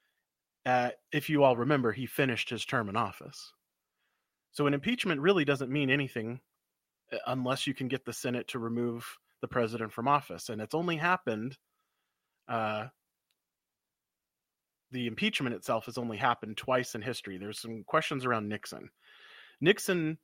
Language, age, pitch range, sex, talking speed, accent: English, 30-49, 120-150 Hz, male, 150 wpm, American